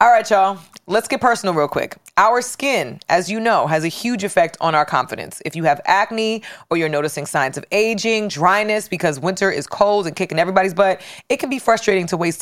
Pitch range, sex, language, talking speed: 165-220 Hz, female, English, 215 wpm